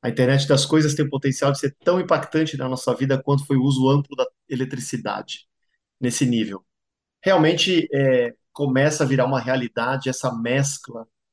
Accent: Brazilian